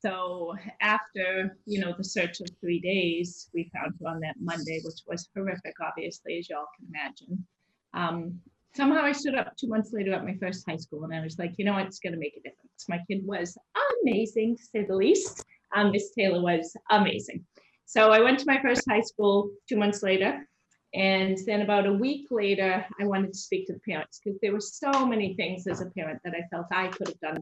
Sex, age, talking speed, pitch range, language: female, 30-49, 225 wpm, 185-235 Hz, English